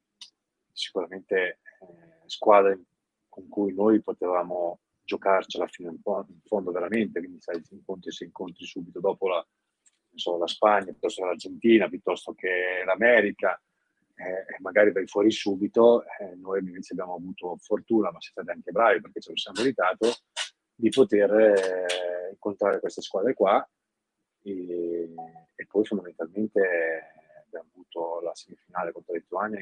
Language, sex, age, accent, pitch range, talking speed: Italian, male, 30-49, native, 85-110 Hz, 140 wpm